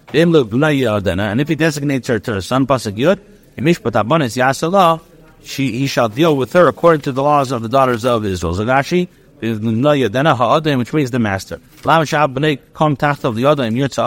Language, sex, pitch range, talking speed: English, male, 120-155 Hz, 115 wpm